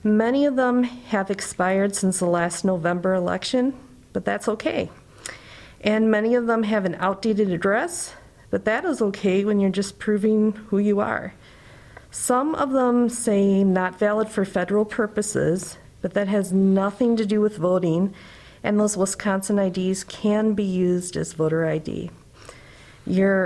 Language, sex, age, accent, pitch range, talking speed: English, female, 50-69, American, 175-210 Hz, 155 wpm